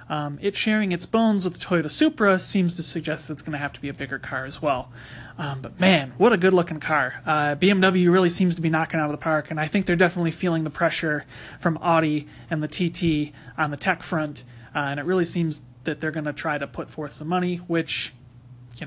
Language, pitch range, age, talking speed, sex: English, 145-180 Hz, 30-49, 240 wpm, male